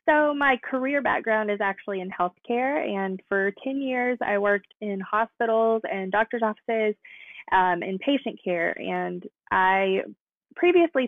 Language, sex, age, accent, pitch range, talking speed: English, female, 20-39, American, 185-245 Hz, 140 wpm